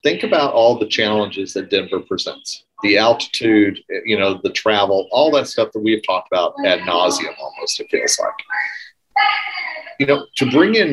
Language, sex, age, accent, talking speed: English, male, 40-59, American, 175 wpm